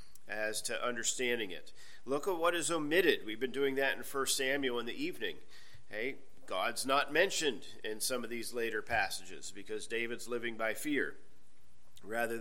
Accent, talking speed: American, 170 wpm